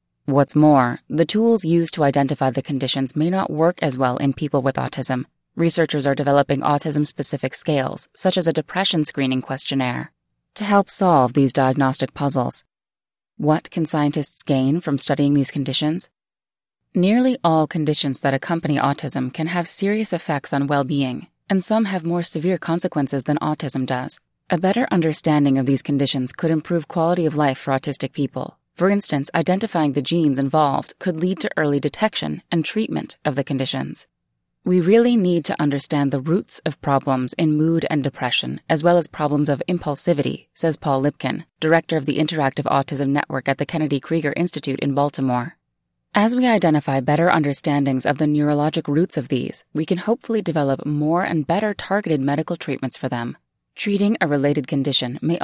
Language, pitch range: English, 140-170 Hz